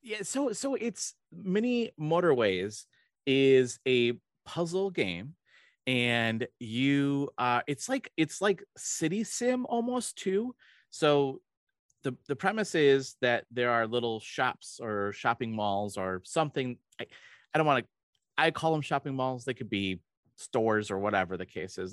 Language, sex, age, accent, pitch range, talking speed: English, male, 30-49, American, 100-145 Hz, 150 wpm